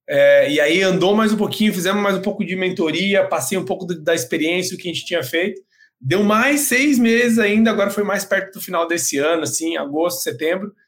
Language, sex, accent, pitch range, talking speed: Portuguese, male, Brazilian, 170-225 Hz, 220 wpm